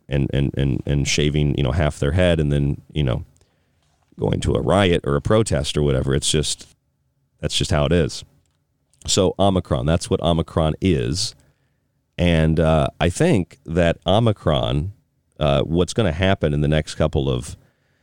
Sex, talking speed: male, 175 wpm